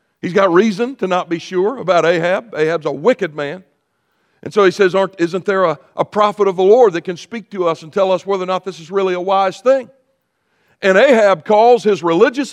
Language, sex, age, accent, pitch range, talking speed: English, male, 60-79, American, 150-205 Hz, 220 wpm